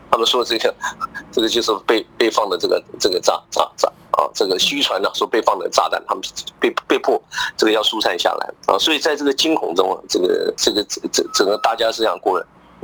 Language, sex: Chinese, male